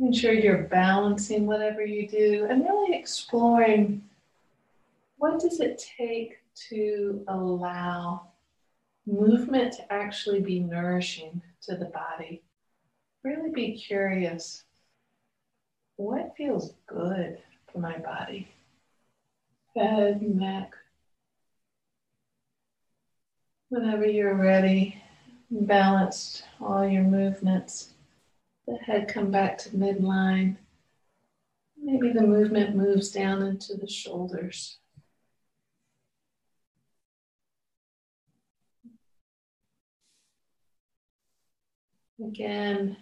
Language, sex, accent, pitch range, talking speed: English, female, American, 185-220 Hz, 80 wpm